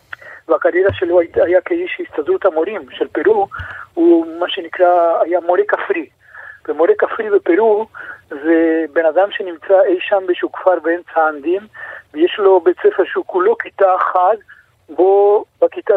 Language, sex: Hebrew, male